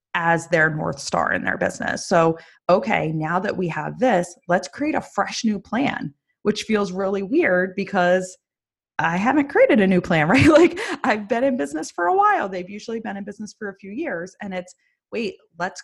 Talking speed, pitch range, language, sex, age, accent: 200 wpm, 170-210 Hz, English, female, 30-49, American